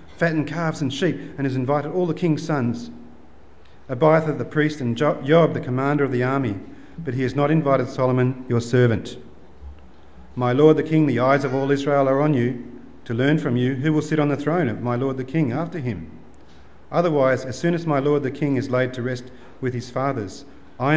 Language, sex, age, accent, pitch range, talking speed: English, male, 40-59, Australian, 120-145 Hz, 210 wpm